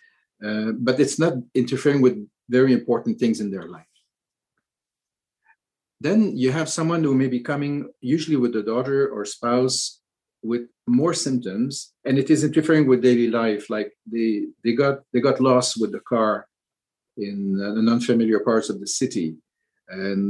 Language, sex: English, male